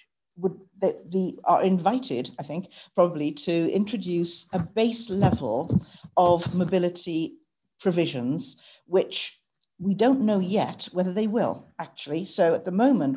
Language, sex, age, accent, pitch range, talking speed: English, female, 50-69, British, 155-205 Hz, 130 wpm